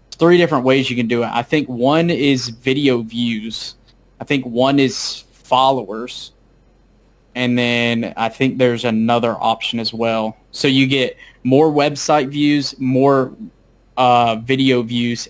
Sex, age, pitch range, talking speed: male, 20-39, 120-140 Hz, 145 wpm